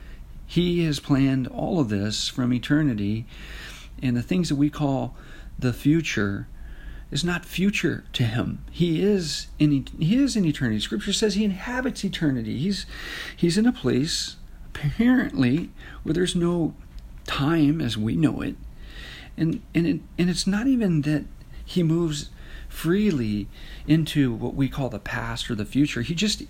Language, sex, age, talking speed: English, male, 50-69, 155 wpm